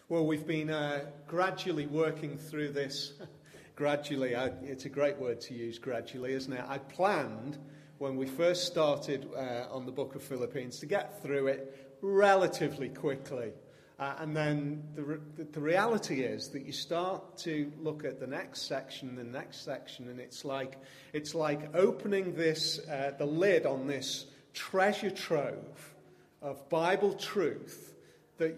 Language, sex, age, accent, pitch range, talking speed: English, male, 40-59, British, 135-160 Hz, 160 wpm